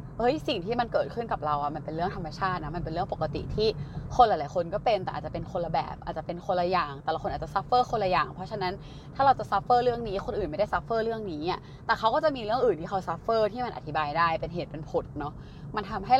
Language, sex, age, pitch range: Thai, female, 20-39, 155-205 Hz